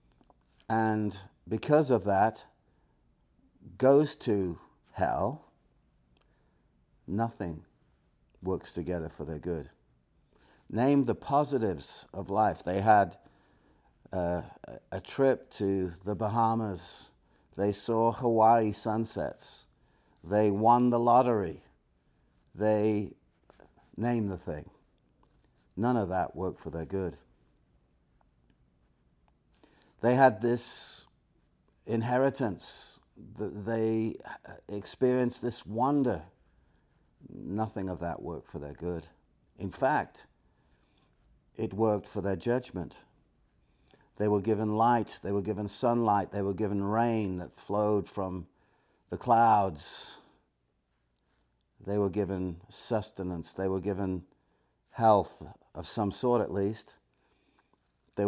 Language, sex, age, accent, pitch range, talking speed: English, male, 60-79, British, 85-110 Hz, 100 wpm